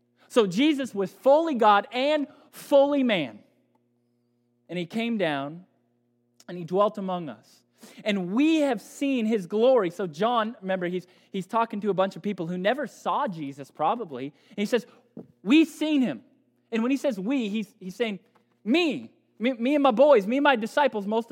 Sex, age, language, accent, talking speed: male, 20-39, English, American, 180 wpm